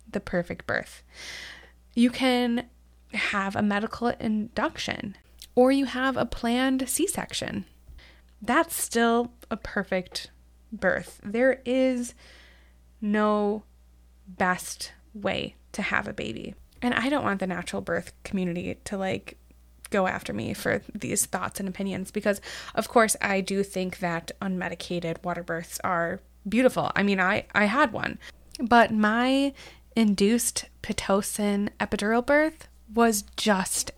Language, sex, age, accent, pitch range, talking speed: English, female, 20-39, American, 165-235 Hz, 125 wpm